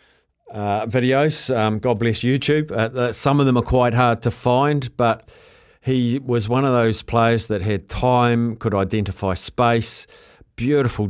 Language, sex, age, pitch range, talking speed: English, male, 50-69, 110-125 Hz, 160 wpm